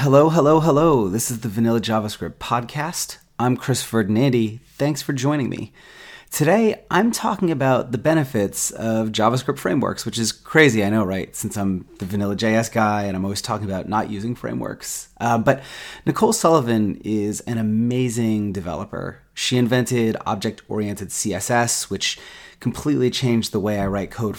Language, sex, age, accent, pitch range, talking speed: English, male, 30-49, American, 105-135 Hz, 160 wpm